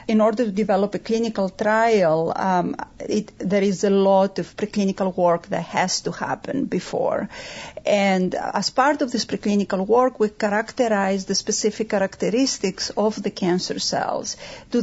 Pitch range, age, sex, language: 195-230 Hz, 40-59, female, English